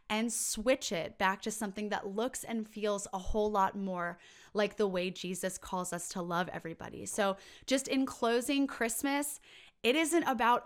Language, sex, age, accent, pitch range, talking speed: English, female, 20-39, American, 190-225 Hz, 175 wpm